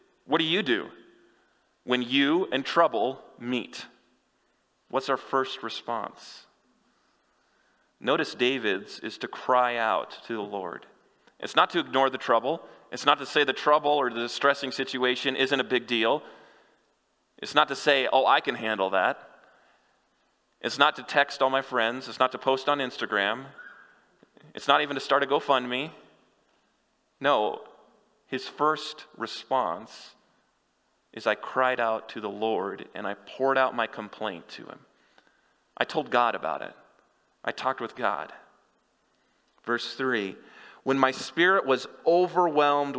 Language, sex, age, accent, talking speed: English, male, 30-49, American, 150 wpm